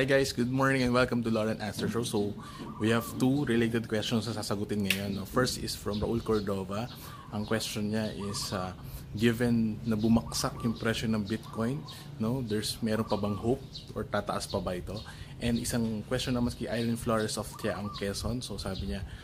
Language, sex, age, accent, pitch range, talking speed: English, male, 20-39, Filipino, 100-120 Hz, 190 wpm